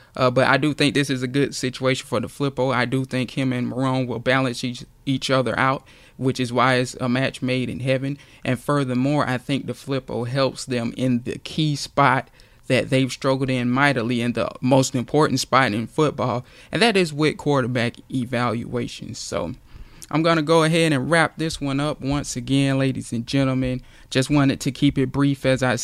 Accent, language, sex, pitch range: American, English, male, 125-140 Hz